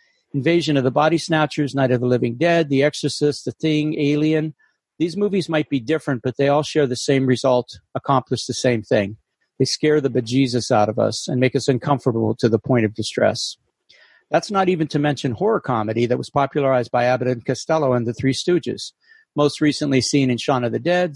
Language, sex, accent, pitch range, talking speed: English, male, American, 125-150 Hz, 205 wpm